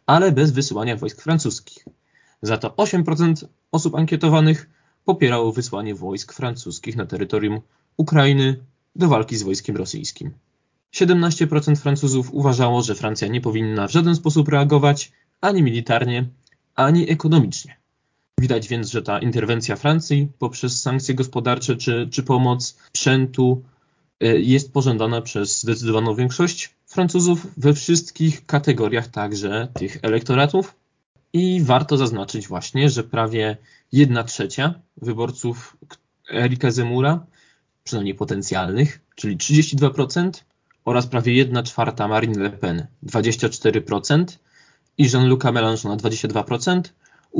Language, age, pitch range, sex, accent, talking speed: Polish, 20-39, 115-155 Hz, male, native, 115 wpm